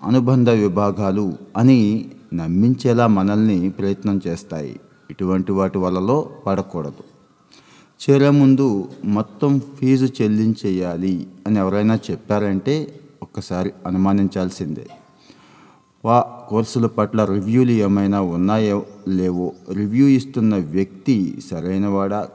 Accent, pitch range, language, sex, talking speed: native, 95-115 Hz, Telugu, male, 85 wpm